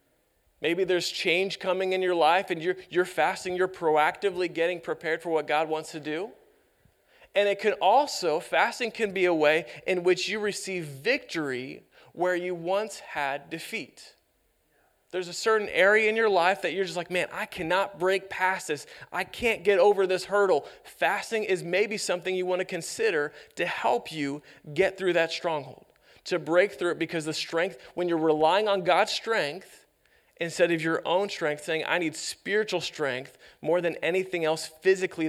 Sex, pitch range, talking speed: male, 155-190 Hz, 180 wpm